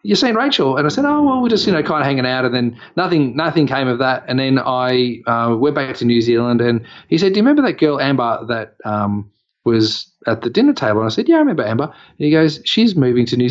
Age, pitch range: 30-49, 115-155 Hz